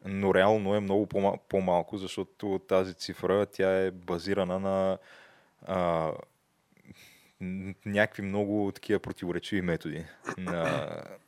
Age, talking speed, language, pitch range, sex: 20-39, 100 wpm, Bulgarian, 90-100 Hz, male